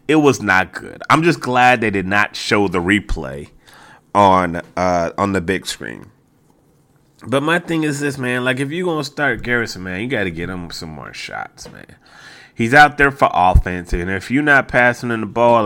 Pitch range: 85-115 Hz